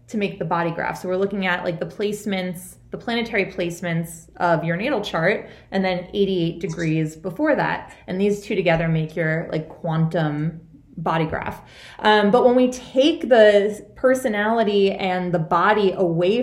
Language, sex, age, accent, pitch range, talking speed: English, female, 20-39, American, 180-240 Hz, 170 wpm